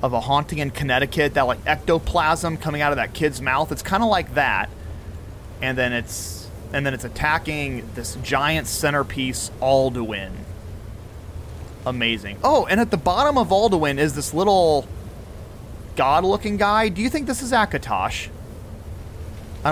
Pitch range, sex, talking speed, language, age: 95-145 Hz, male, 150 wpm, English, 30-49